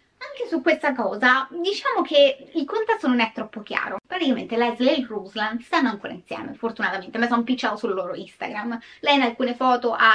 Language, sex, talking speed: Italian, female, 185 wpm